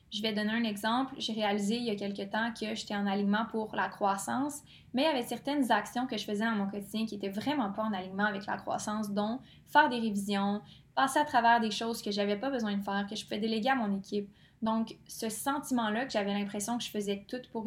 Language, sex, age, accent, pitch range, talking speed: French, female, 20-39, Canadian, 205-230 Hz, 250 wpm